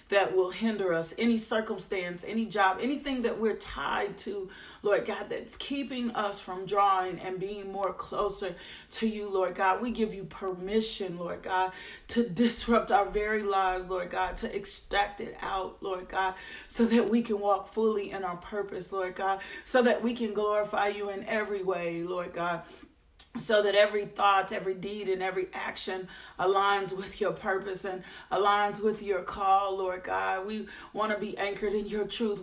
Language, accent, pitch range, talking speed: English, American, 190-215 Hz, 180 wpm